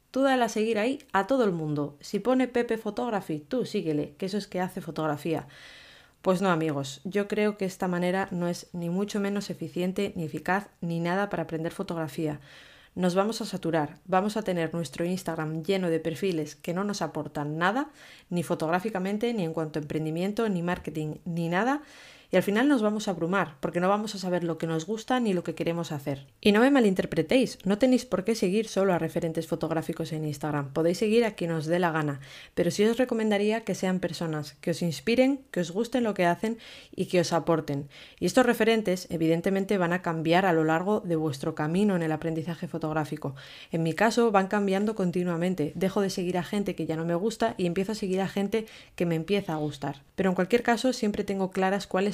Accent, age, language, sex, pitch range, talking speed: Spanish, 20-39, Spanish, female, 165-210 Hz, 215 wpm